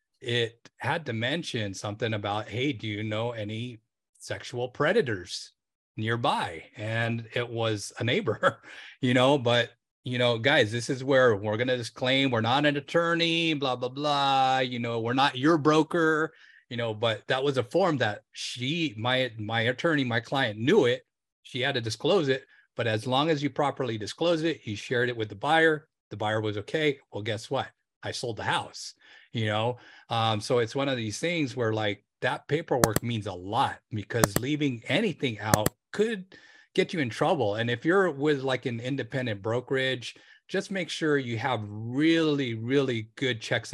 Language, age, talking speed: English, 30-49, 180 wpm